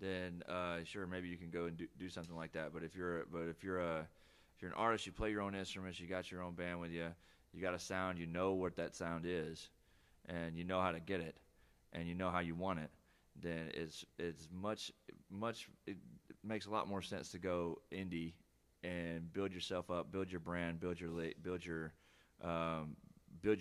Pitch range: 80-90 Hz